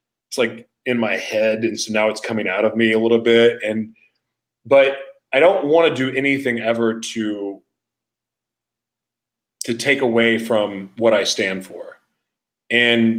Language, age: English, 30-49